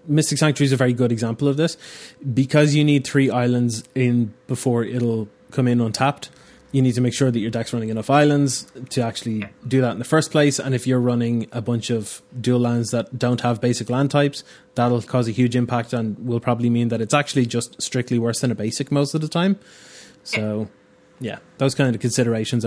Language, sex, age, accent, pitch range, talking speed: English, male, 20-39, Irish, 120-140 Hz, 215 wpm